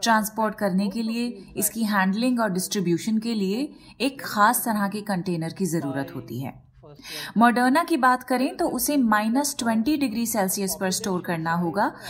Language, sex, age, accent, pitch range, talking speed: Hindi, female, 30-49, native, 200-265 Hz, 160 wpm